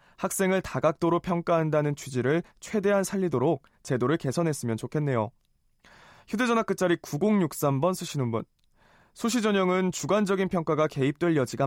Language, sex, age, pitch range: Korean, male, 20-39, 135-185 Hz